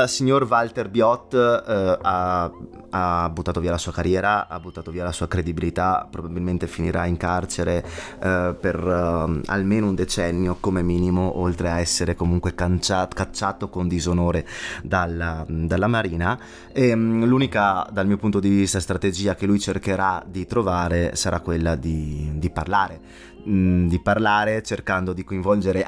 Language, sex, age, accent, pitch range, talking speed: Italian, male, 20-39, native, 85-105 Hz, 145 wpm